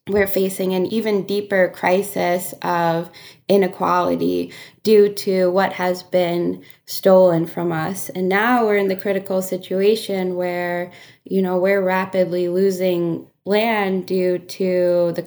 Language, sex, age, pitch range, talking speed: English, female, 10-29, 180-200 Hz, 130 wpm